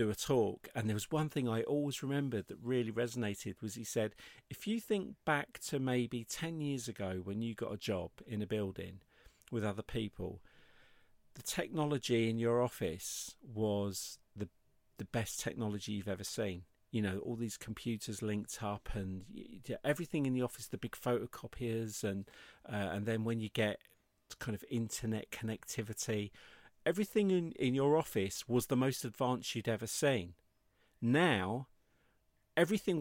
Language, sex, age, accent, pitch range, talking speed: English, male, 50-69, British, 105-130 Hz, 165 wpm